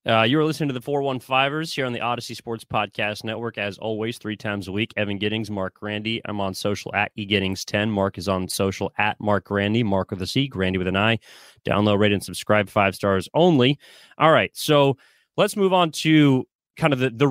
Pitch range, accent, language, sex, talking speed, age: 105-135 Hz, American, English, male, 210 wpm, 30-49